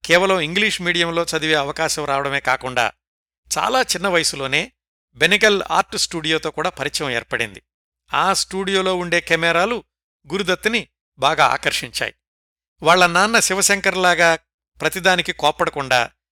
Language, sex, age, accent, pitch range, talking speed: Telugu, male, 60-79, native, 140-180 Hz, 105 wpm